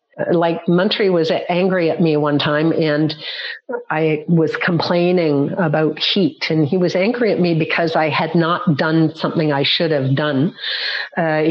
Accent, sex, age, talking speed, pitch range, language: American, female, 50-69, 160 wpm, 170-220 Hz, English